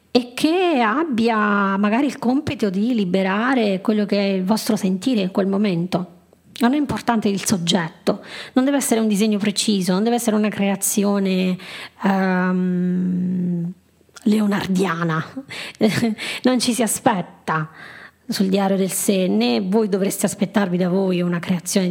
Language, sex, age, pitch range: Italian, female, 20-39, 190-240 Hz